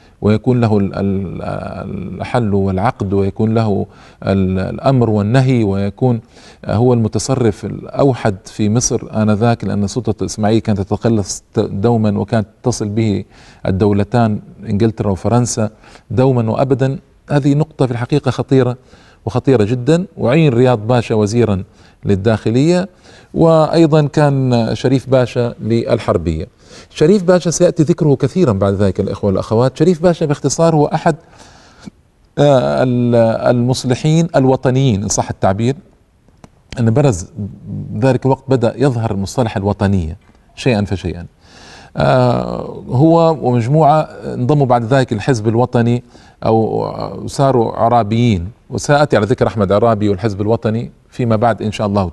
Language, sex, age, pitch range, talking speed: Arabic, male, 40-59, 105-130 Hz, 110 wpm